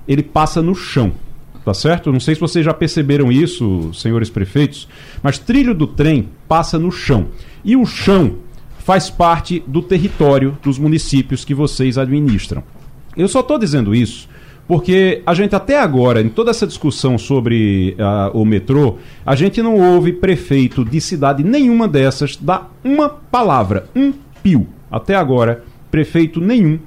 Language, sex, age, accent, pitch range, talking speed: Portuguese, male, 40-59, Brazilian, 125-170 Hz, 155 wpm